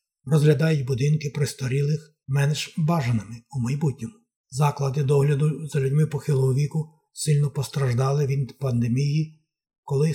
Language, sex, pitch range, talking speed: Ukrainian, male, 135-150 Hz, 105 wpm